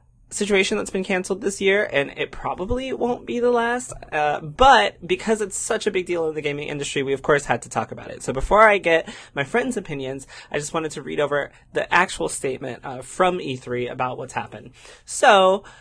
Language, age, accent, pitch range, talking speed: English, 20-39, American, 145-195 Hz, 215 wpm